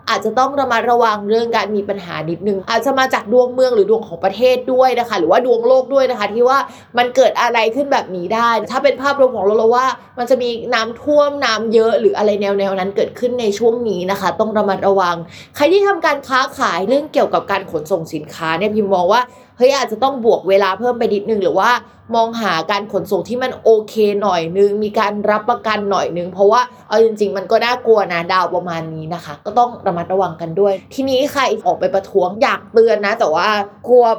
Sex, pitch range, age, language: female, 195-250 Hz, 20-39, Thai